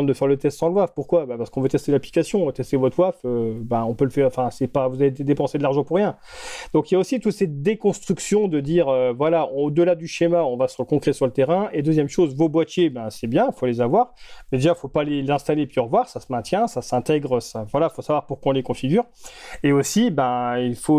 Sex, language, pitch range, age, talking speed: male, English, 135-180 Hz, 30-49, 275 wpm